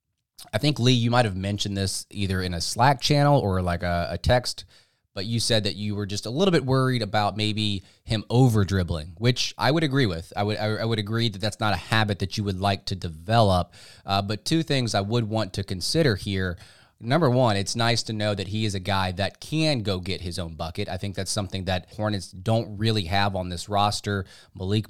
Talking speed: 230 wpm